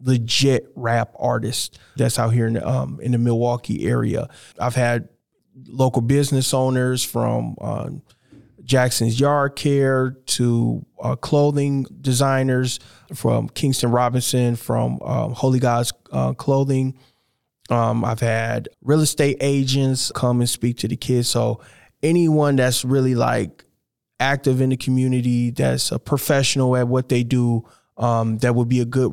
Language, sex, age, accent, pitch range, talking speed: English, male, 20-39, American, 120-135 Hz, 140 wpm